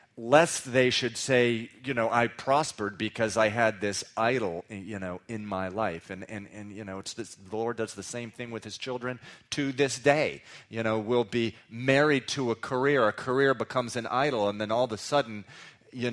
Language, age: English, 40-59